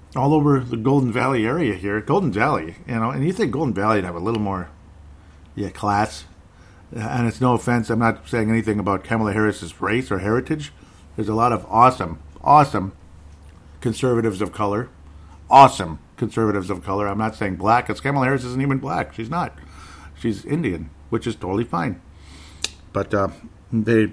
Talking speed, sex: 175 wpm, male